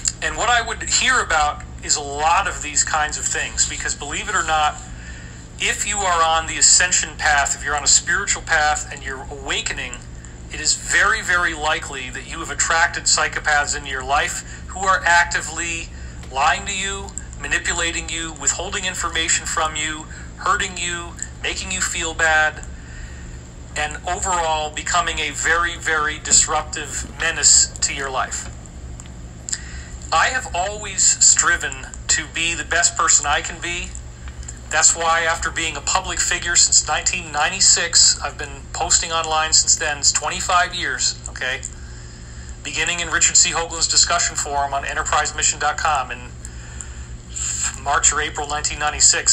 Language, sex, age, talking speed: English, male, 40-59, 150 wpm